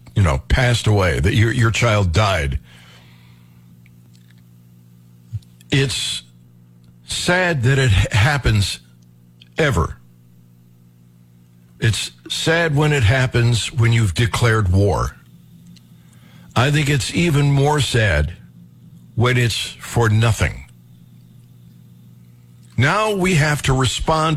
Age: 60-79